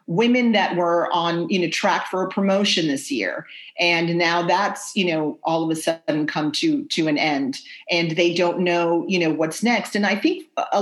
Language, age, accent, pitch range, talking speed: English, 40-59, American, 160-200 Hz, 210 wpm